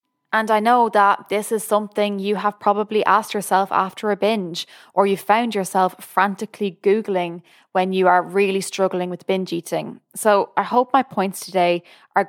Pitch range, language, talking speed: 185-210 Hz, English, 175 wpm